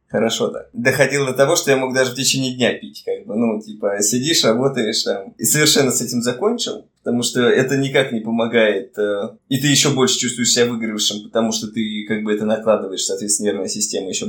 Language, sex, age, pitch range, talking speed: Russian, male, 20-39, 110-130 Hz, 205 wpm